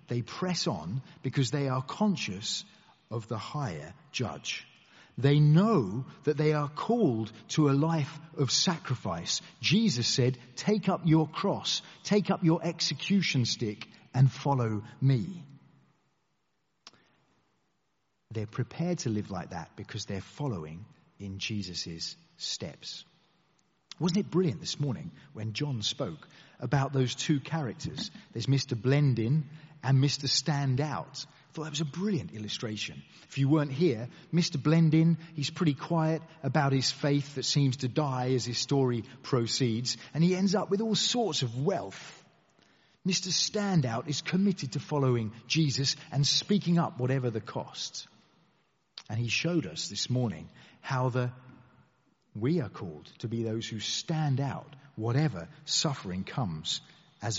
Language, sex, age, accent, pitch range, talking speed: English, male, 40-59, British, 125-165 Hz, 140 wpm